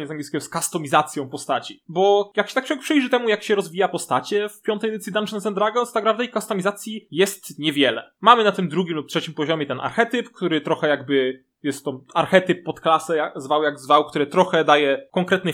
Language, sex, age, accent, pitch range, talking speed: Polish, male, 20-39, native, 160-210 Hz, 205 wpm